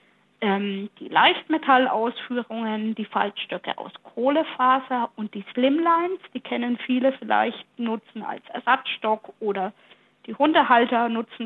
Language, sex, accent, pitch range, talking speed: German, female, German, 225-275 Hz, 105 wpm